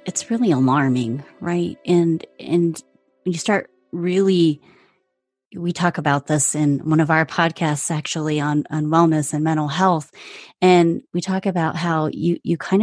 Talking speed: 155 wpm